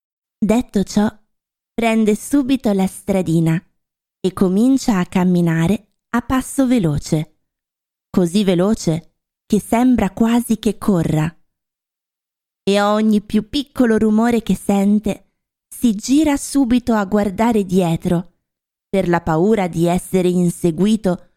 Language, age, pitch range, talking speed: Italian, 20-39, 180-235 Hz, 110 wpm